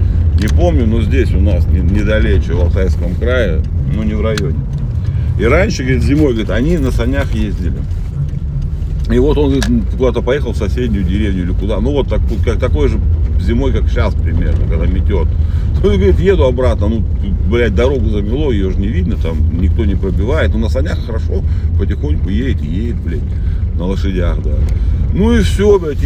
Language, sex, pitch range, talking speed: Russian, male, 80-100 Hz, 180 wpm